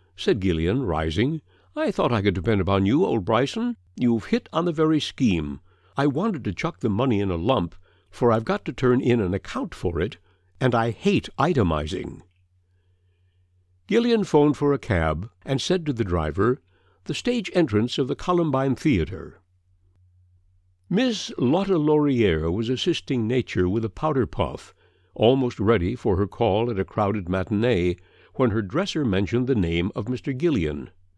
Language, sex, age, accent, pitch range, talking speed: English, male, 60-79, American, 90-140 Hz, 165 wpm